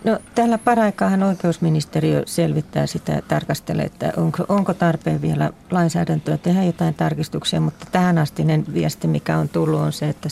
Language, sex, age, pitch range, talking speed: Finnish, female, 40-59, 155-180 Hz, 165 wpm